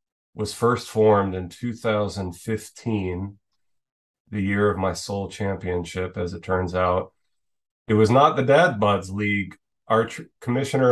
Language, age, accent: English, 30-49, American